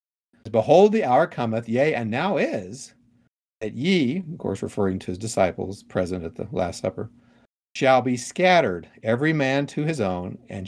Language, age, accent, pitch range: English, 50-69, American, 95-125 Hz